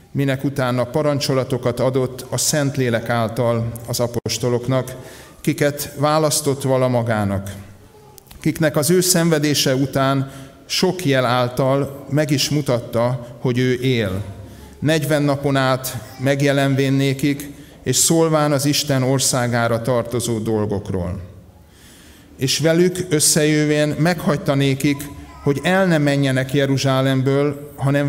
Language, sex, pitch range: Hungarian, male, 120-145 Hz